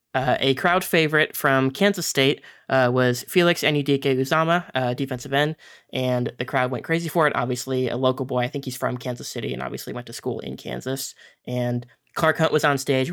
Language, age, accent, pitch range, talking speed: English, 20-39, American, 125-140 Hz, 205 wpm